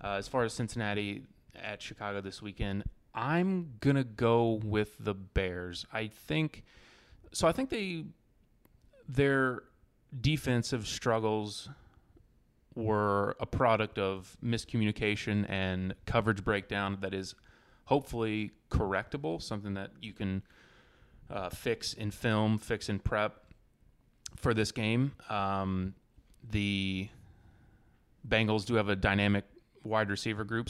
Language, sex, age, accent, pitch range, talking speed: English, male, 30-49, American, 95-115 Hz, 120 wpm